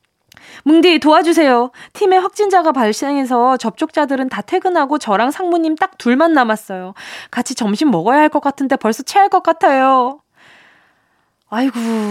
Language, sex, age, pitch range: Korean, female, 20-39, 210-305 Hz